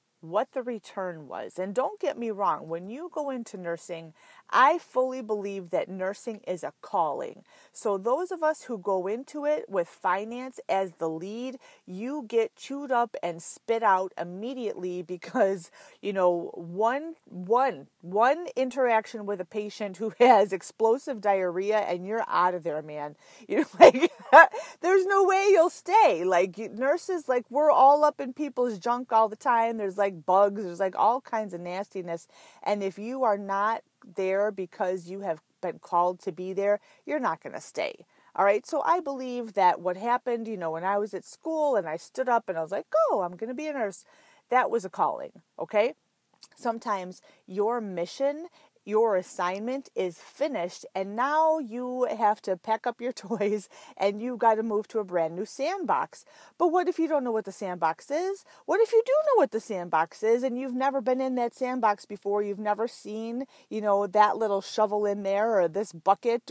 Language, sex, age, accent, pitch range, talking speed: English, female, 30-49, American, 190-255 Hz, 190 wpm